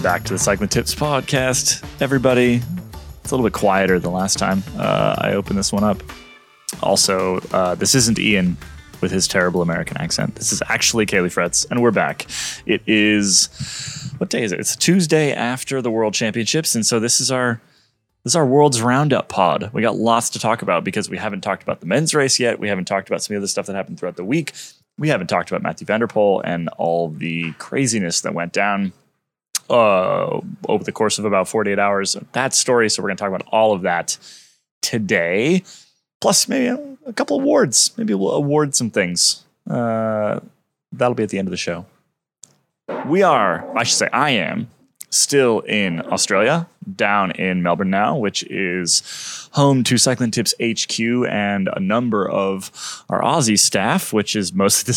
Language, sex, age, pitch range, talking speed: English, male, 20-39, 95-130 Hz, 190 wpm